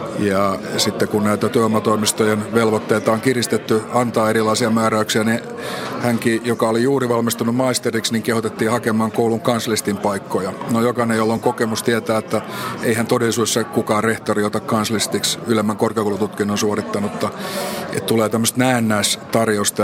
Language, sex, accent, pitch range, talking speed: Finnish, male, native, 105-115 Hz, 130 wpm